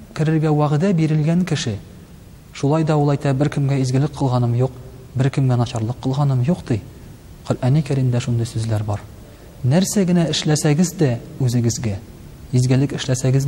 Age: 40-59